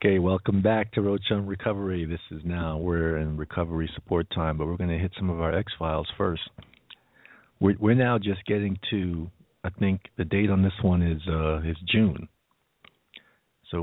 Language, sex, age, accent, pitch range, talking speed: English, male, 50-69, American, 85-105 Hz, 185 wpm